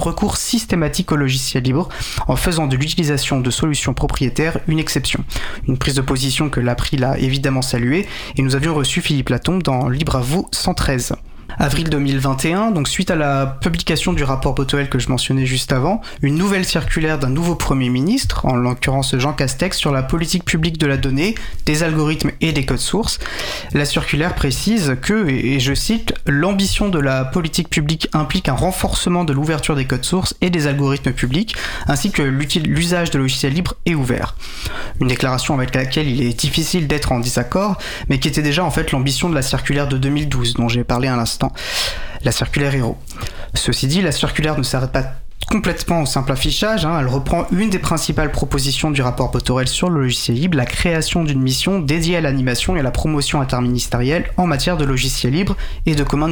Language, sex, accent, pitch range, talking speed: French, male, French, 130-165 Hz, 195 wpm